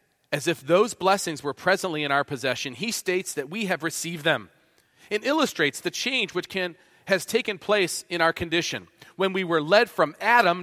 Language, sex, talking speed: English, male, 185 wpm